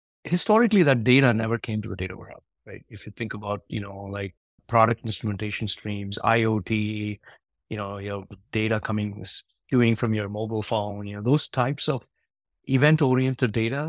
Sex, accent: male, Indian